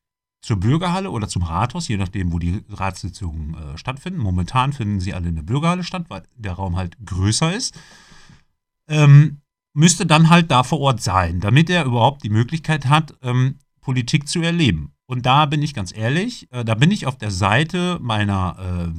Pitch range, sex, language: 100-150 Hz, male, German